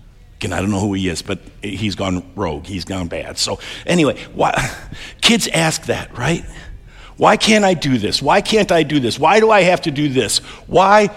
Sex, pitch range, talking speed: male, 115-165 Hz, 210 wpm